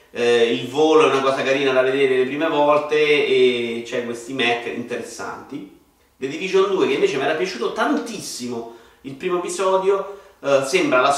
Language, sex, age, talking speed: Italian, male, 40-59, 170 wpm